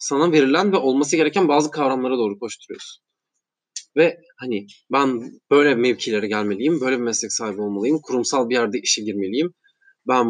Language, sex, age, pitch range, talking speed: Turkish, male, 20-39, 130-170 Hz, 150 wpm